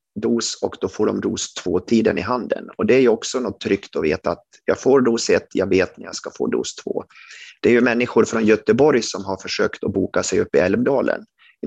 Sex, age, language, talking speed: male, 30-49, Swedish, 240 wpm